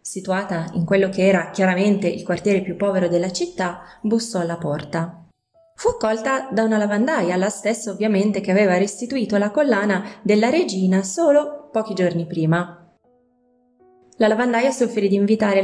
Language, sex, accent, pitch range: English, female, Italian, 185-245 Hz